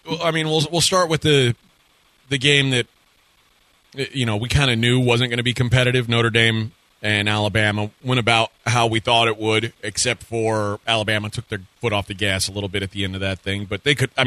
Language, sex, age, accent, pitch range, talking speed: English, male, 30-49, American, 110-140 Hz, 225 wpm